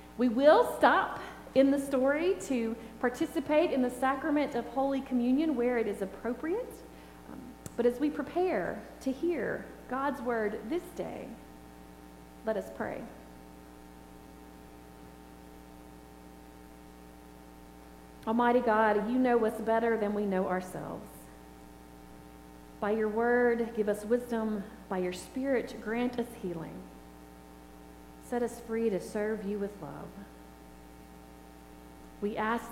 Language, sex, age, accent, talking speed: English, female, 40-59, American, 115 wpm